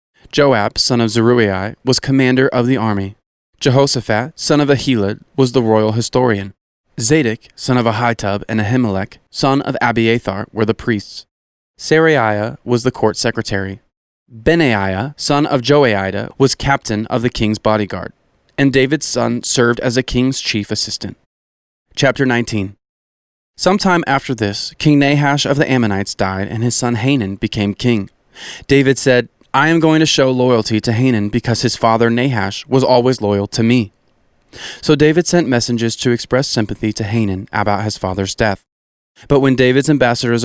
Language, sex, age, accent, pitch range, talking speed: English, male, 20-39, American, 105-135 Hz, 155 wpm